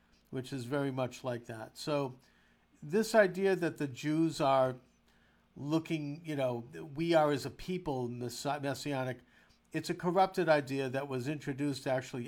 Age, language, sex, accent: 50-69, English, male, American